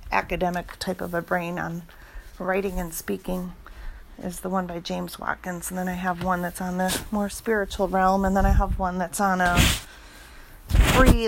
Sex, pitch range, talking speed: female, 170-200 Hz, 185 wpm